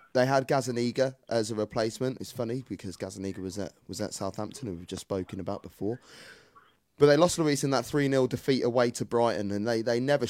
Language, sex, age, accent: English, male, 20-39, British